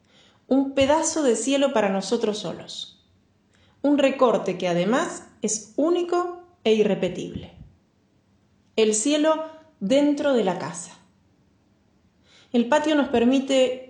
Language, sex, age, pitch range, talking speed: Spanish, female, 30-49, 195-280 Hz, 110 wpm